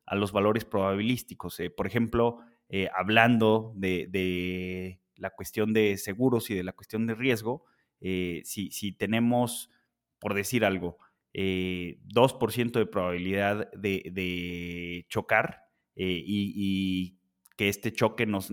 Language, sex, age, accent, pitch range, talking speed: Spanish, male, 30-49, Mexican, 95-115 Hz, 135 wpm